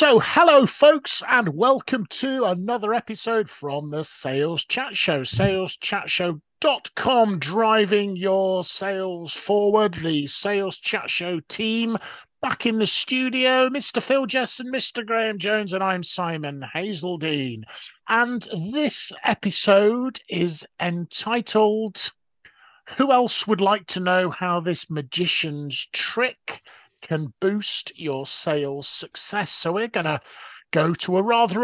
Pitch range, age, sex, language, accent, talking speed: 155-220 Hz, 50-69, male, English, British, 125 wpm